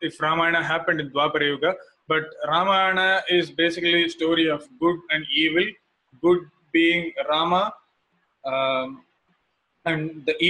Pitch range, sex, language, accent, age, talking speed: 150-170 Hz, male, English, Indian, 20-39, 120 wpm